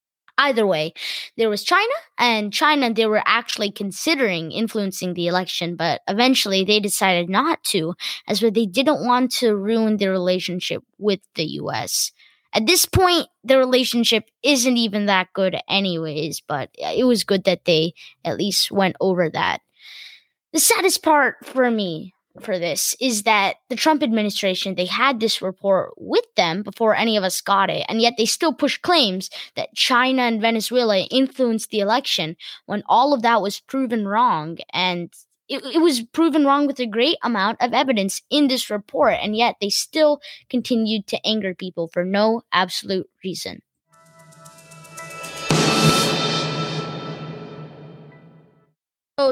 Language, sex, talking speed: English, female, 150 wpm